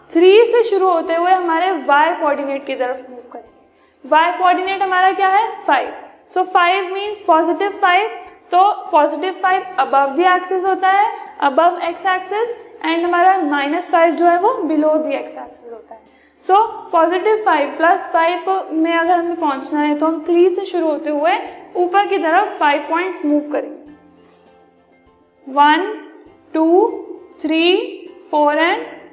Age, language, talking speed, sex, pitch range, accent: 20-39, English, 155 wpm, female, 305-380 Hz, Indian